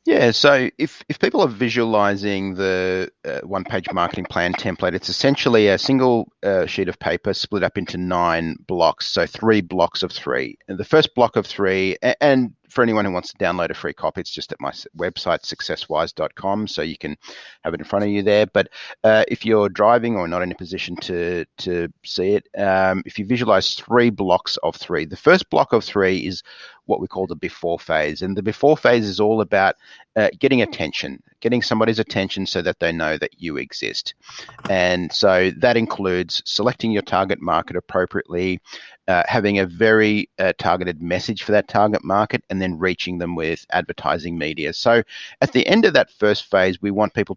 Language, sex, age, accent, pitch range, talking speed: English, male, 30-49, Australian, 90-110 Hz, 200 wpm